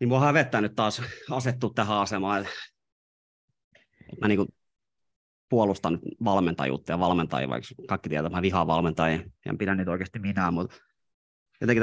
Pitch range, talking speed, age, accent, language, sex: 90-105 Hz, 135 wpm, 30-49, native, Finnish, male